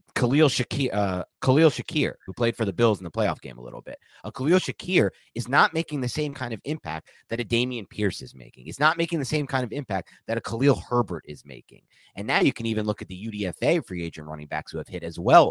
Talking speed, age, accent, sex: 255 wpm, 30-49, American, male